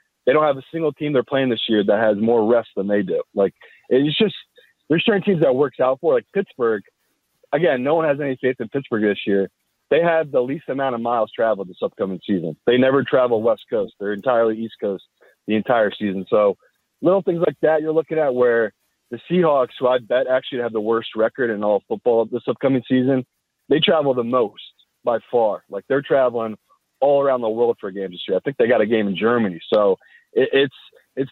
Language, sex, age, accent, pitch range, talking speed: English, male, 30-49, American, 110-155 Hz, 225 wpm